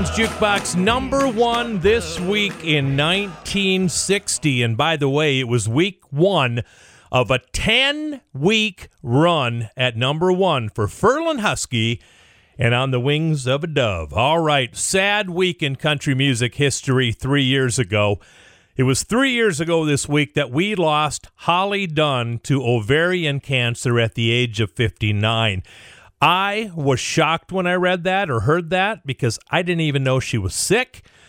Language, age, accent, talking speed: English, 40-59, American, 155 wpm